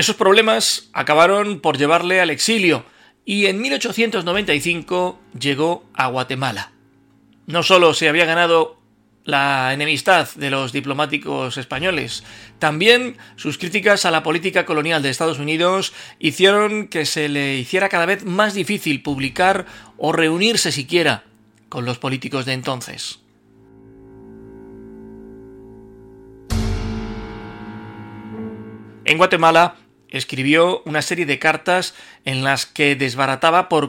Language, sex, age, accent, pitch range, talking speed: Spanish, male, 40-59, Spanish, 130-175 Hz, 115 wpm